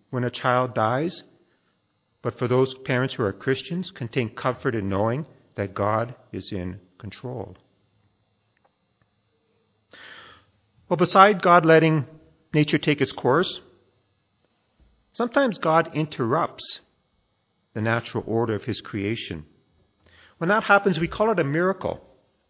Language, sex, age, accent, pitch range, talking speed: English, male, 40-59, American, 115-170 Hz, 120 wpm